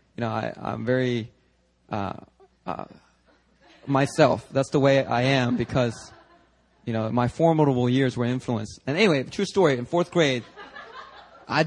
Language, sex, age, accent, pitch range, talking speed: English, male, 30-49, American, 125-195 Hz, 145 wpm